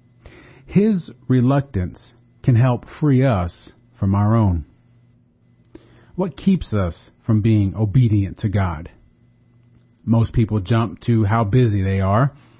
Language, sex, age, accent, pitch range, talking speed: English, male, 40-59, American, 110-130 Hz, 120 wpm